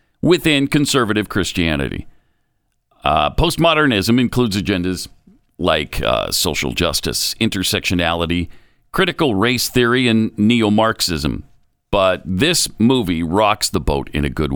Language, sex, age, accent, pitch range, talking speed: English, male, 50-69, American, 95-140 Hz, 105 wpm